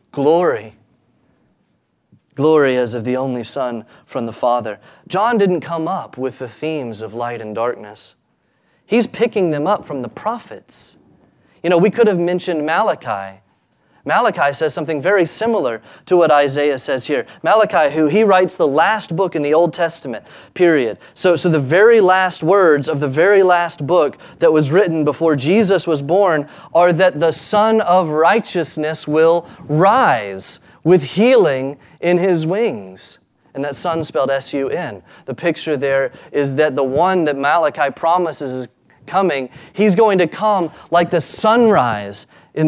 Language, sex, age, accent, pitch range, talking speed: English, male, 30-49, American, 125-175 Hz, 160 wpm